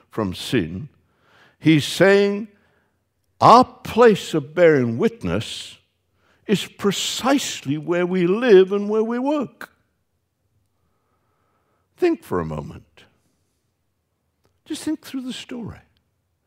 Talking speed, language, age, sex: 100 wpm, English, 60-79, male